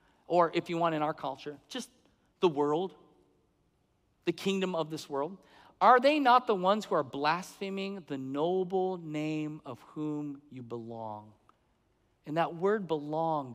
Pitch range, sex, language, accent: 155-205 Hz, male, English, American